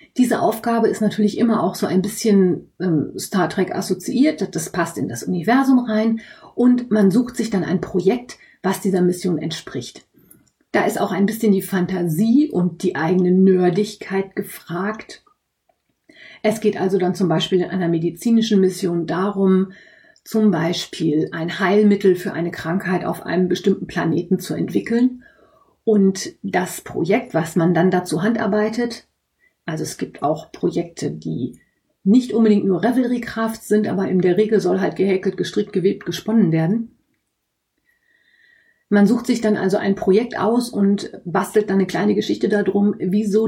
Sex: female